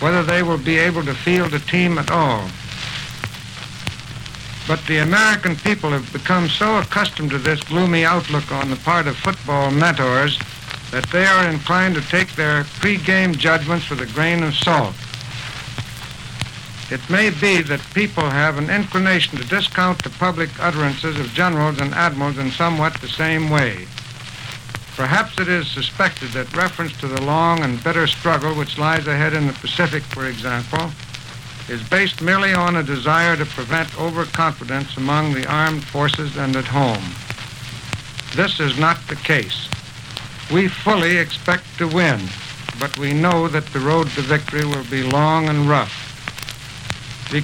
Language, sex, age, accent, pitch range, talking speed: English, male, 60-79, American, 130-170 Hz, 160 wpm